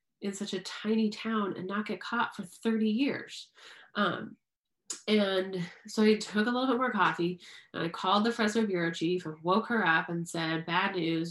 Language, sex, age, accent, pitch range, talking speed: English, female, 30-49, American, 170-215 Hz, 195 wpm